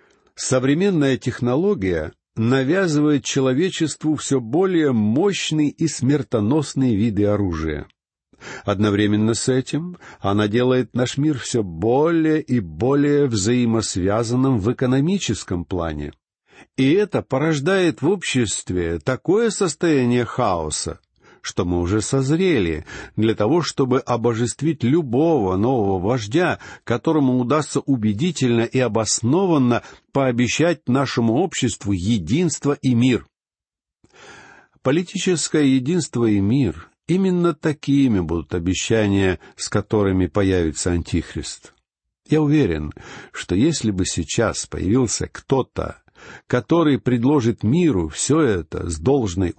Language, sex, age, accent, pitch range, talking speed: Russian, male, 60-79, native, 105-150 Hz, 100 wpm